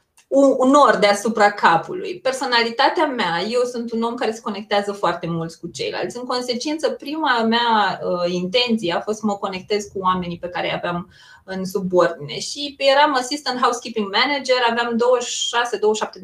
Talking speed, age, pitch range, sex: 155 wpm, 20-39, 195-290 Hz, female